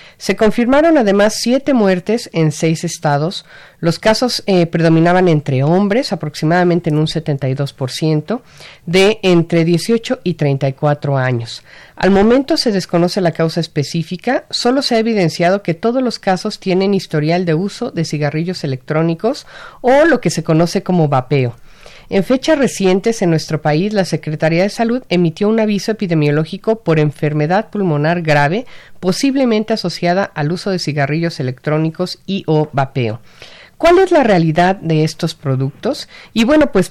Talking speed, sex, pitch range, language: 150 wpm, female, 155-210 Hz, Spanish